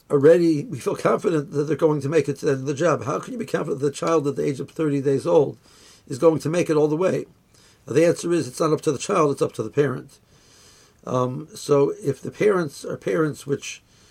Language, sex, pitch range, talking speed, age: English, male, 130-155 Hz, 250 wpm, 60-79